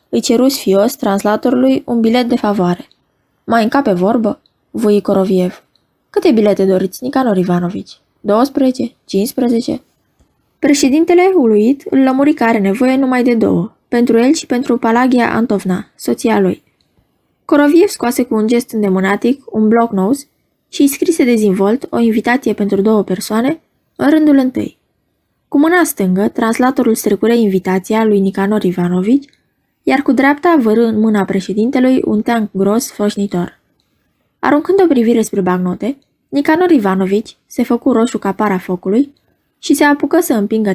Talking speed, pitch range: 140 wpm, 195-270 Hz